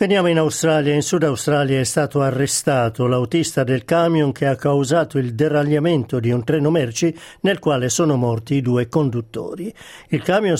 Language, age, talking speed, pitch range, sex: Italian, 50-69, 170 wpm, 135-165 Hz, male